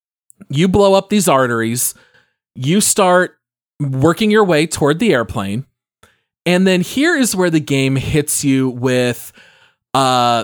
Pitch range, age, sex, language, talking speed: 125-175 Hz, 30-49, male, English, 140 wpm